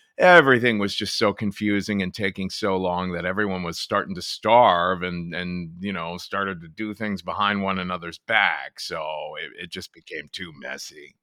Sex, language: male, English